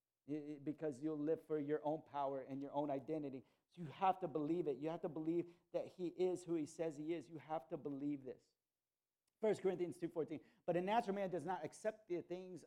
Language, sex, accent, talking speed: English, male, American, 225 wpm